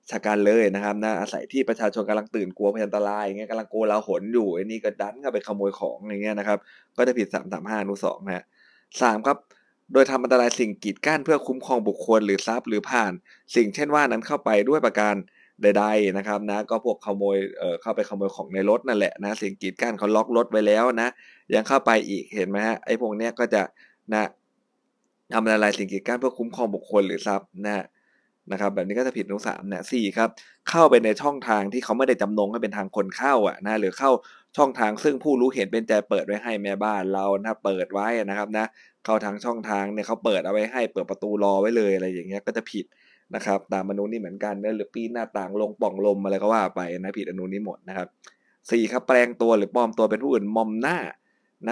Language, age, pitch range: Thai, 20-39, 100-115 Hz